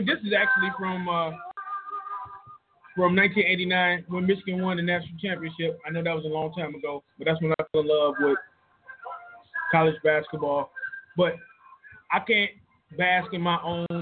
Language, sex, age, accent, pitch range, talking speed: English, male, 20-39, American, 170-240 Hz, 160 wpm